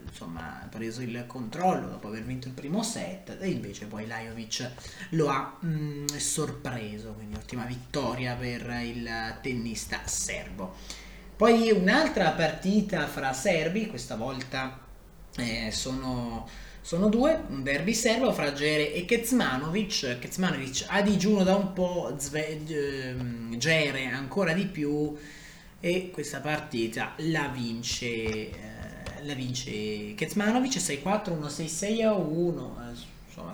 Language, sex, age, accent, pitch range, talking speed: Italian, male, 20-39, native, 120-170 Hz, 125 wpm